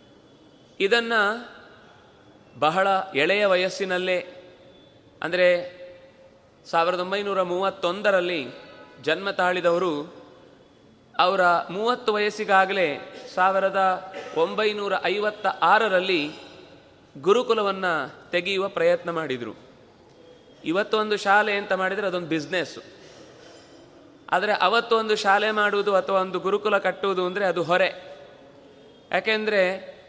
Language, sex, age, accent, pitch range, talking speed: Kannada, male, 30-49, native, 180-210 Hz, 75 wpm